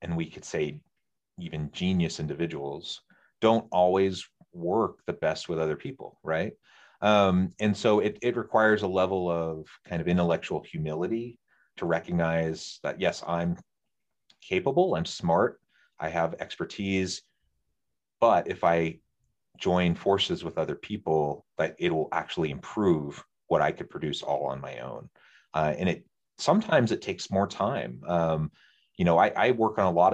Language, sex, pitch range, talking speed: English, male, 80-115 Hz, 155 wpm